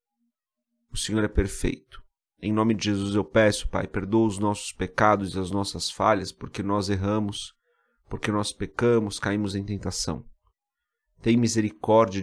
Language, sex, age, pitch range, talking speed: Portuguese, male, 40-59, 95-115 Hz, 145 wpm